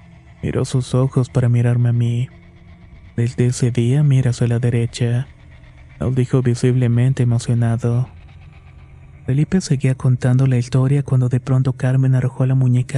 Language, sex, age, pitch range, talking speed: Spanish, male, 30-49, 125-130 Hz, 140 wpm